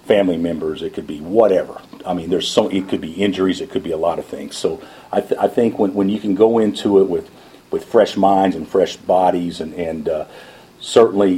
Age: 50-69